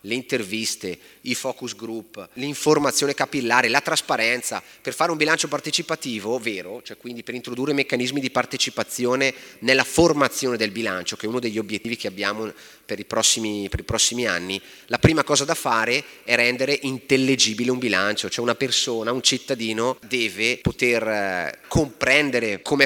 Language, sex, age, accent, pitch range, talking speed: Italian, male, 30-49, native, 110-140 Hz, 155 wpm